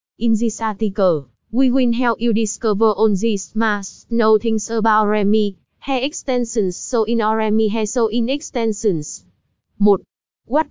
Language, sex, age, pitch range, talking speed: Vietnamese, female, 20-39, 215-245 Hz, 140 wpm